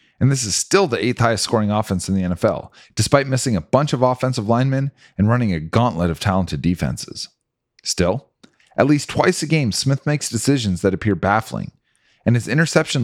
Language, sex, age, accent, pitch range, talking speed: English, male, 30-49, American, 105-140 Hz, 190 wpm